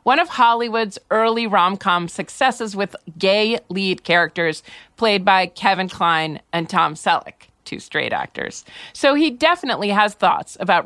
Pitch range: 170-235 Hz